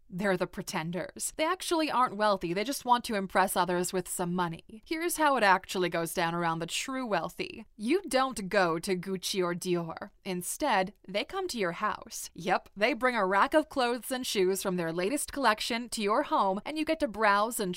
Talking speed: 205 wpm